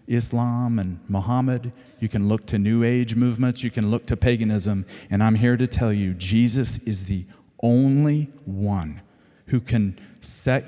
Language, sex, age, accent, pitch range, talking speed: English, male, 40-59, American, 105-135 Hz, 165 wpm